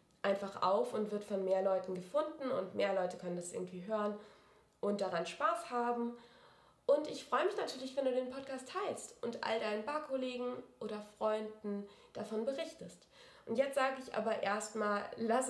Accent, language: German, German